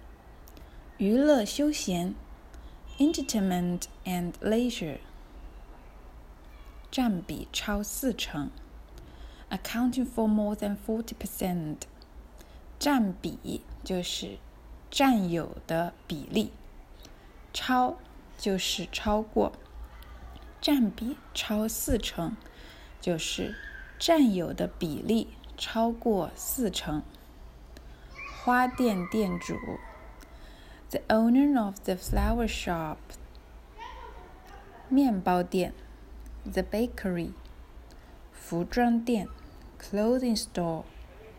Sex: female